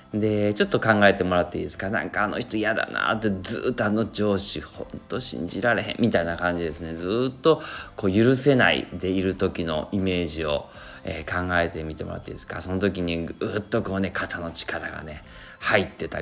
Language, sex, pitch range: Japanese, male, 85-110 Hz